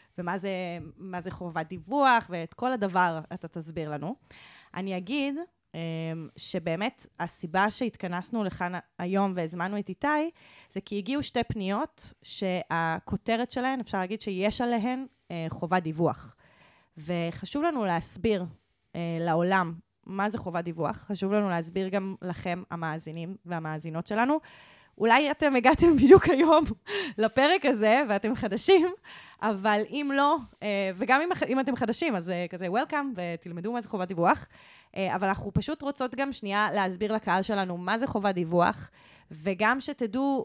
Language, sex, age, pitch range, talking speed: Hebrew, female, 20-39, 170-230 Hz, 130 wpm